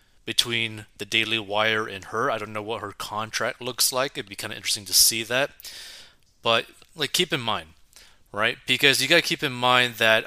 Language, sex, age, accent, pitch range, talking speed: English, male, 30-49, American, 105-130 Hz, 210 wpm